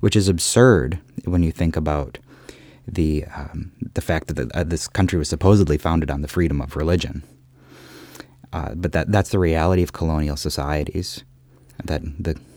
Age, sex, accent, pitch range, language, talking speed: 30-49, male, American, 75-95 Hz, English, 165 wpm